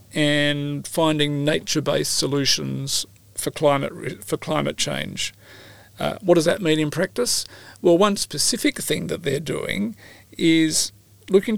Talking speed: 130 wpm